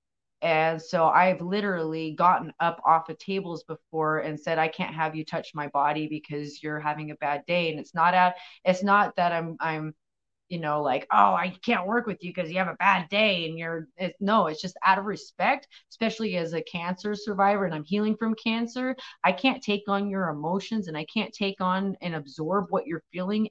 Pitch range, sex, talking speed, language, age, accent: 155-200 Hz, female, 210 wpm, English, 30-49, American